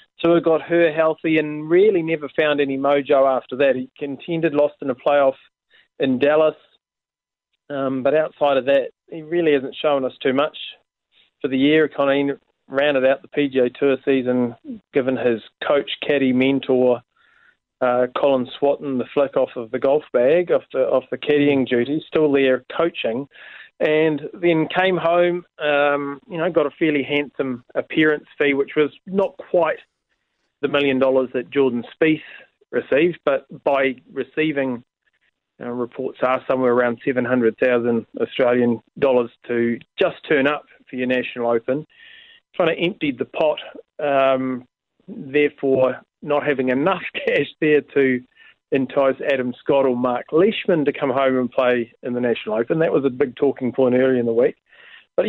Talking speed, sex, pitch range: 165 wpm, male, 130-160 Hz